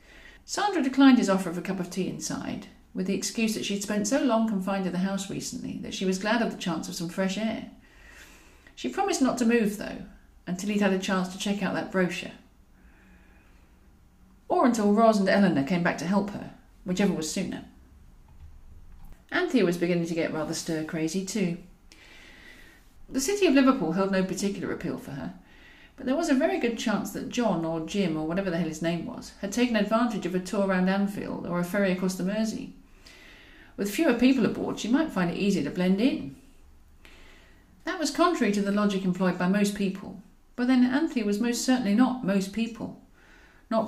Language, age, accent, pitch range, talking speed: English, 40-59, British, 180-240 Hz, 195 wpm